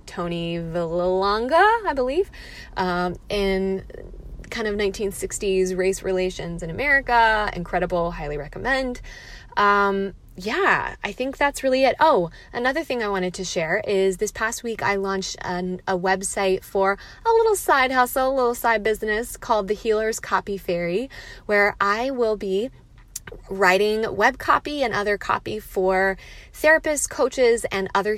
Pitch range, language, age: 185-240 Hz, English, 20-39